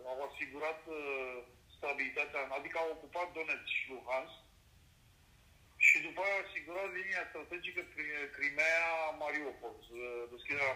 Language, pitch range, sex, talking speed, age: Romanian, 145-190 Hz, male, 115 wpm, 40-59